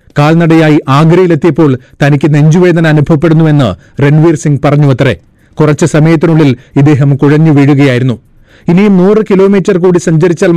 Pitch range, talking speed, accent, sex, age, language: 140-165 Hz, 95 wpm, native, male, 30-49, Malayalam